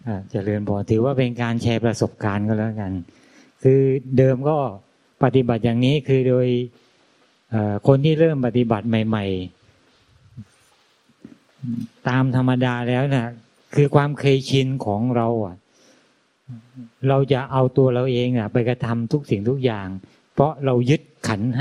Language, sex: Thai, male